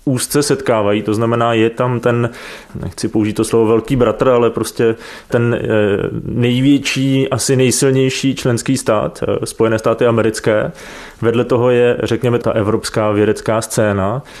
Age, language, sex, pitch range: 20-39, Czech, male, 110-125 Hz